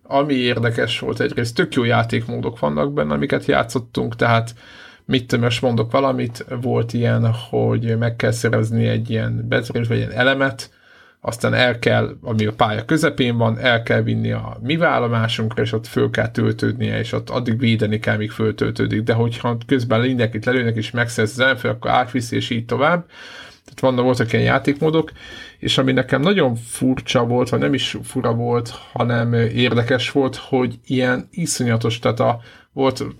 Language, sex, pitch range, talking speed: Hungarian, male, 110-130 Hz, 165 wpm